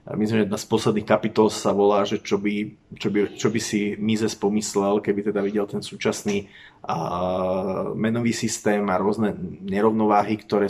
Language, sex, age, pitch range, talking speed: Slovak, male, 30-49, 100-115 Hz, 170 wpm